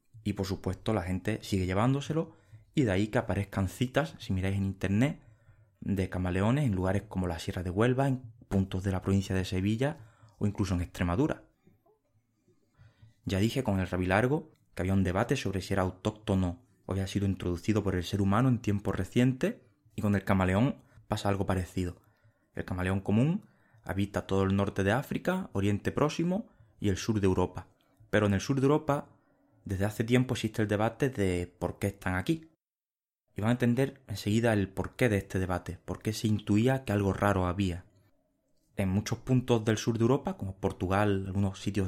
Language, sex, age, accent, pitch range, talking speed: Spanish, male, 20-39, Spanish, 95-115 Hz, 185 wpm